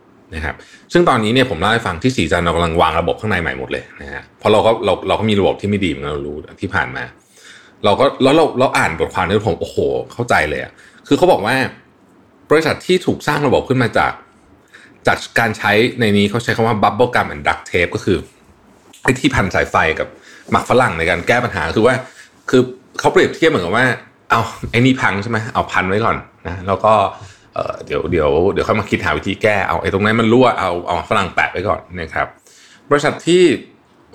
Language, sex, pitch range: Thai, male, 95-125 Hz